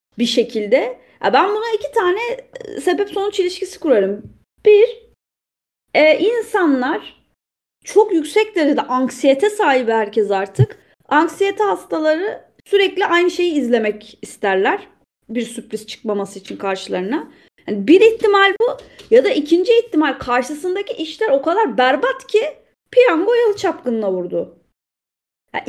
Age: 30-49